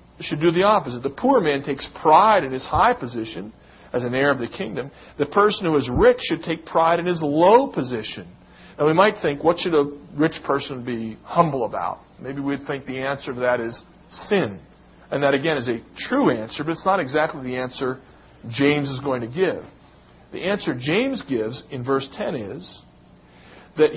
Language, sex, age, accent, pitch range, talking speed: English, male, 50-69, American, 125-160 Hz, 200 wpm